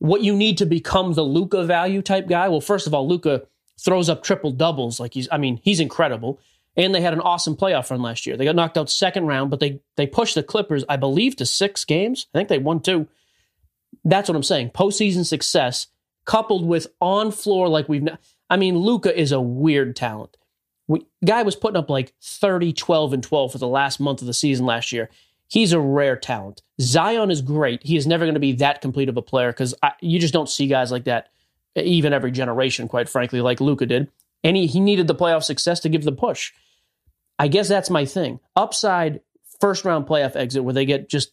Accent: American